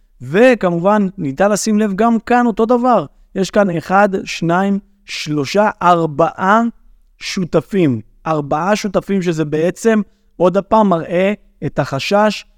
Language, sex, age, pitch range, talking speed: Hebrew, male, 30-49, 155-195 Hz, 115 wpm